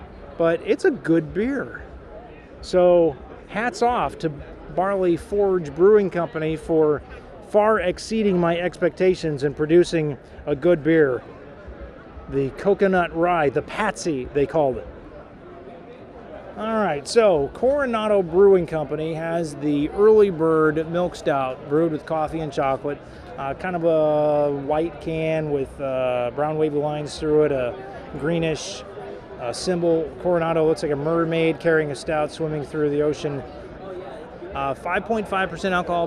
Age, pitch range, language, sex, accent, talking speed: 30-49, 150-185 Hz, English, male, American, 130 wpm